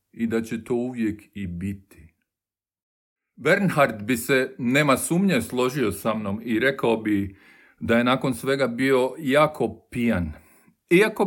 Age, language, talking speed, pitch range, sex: 50-69, Croatian, 140 wpm, 100-135 Hz, male